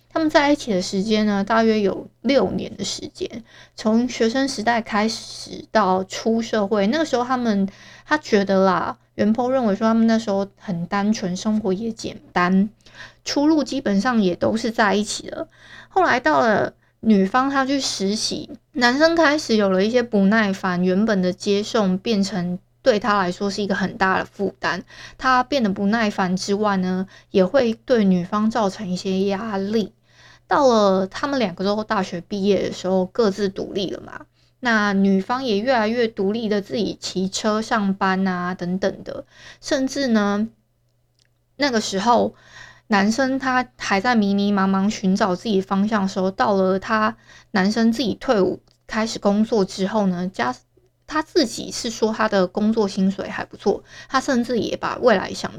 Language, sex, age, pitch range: Chinese, female, 20-39, 190-235 Hz